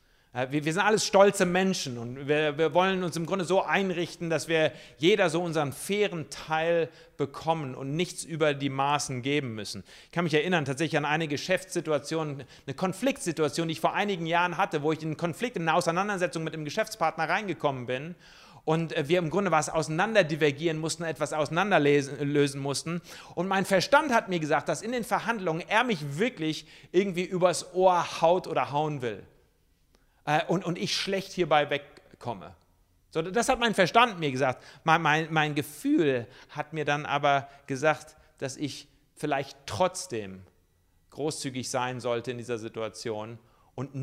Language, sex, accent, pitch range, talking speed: German, male, German, 130-175 Hz, 165 wpm